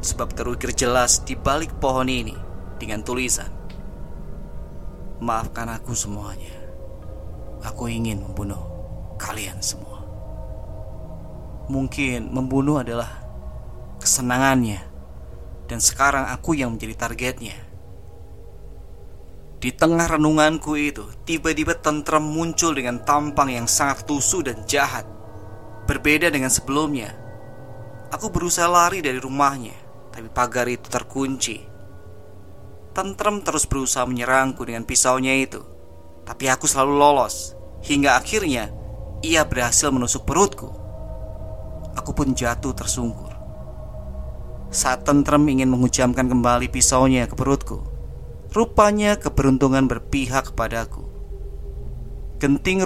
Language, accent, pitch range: Indonesian, native, 100-135 Hz